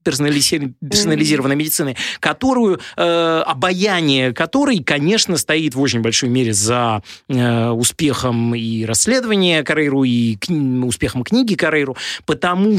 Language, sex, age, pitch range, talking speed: Russian, male, 20-39, 115-150 Hz, 95 wpm